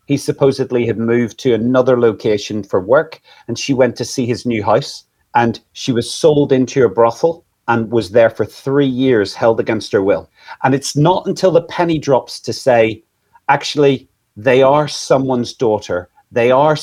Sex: male